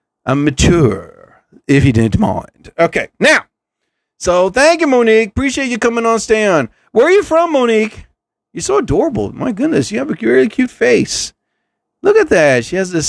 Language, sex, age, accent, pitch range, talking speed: English, male, 40-59, American, 125-205 Hz, 185 wpm